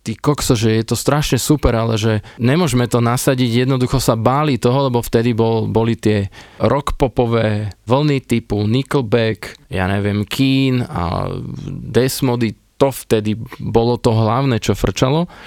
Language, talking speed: Slovak, 130 wpm